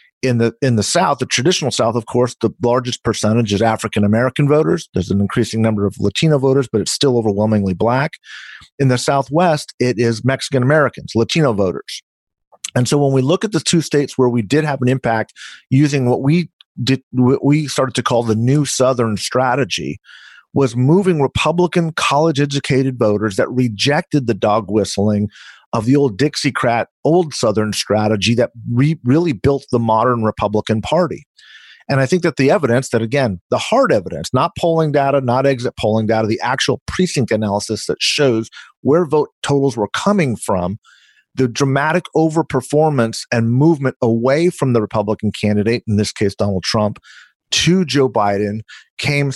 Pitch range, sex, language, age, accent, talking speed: 110-145 Hz, male, English, 40-59, American, 170 wpm